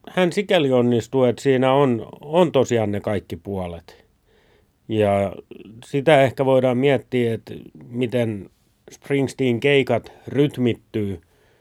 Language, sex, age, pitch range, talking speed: Finnish, male, 30-49, 100-130 Hz, 110 wpm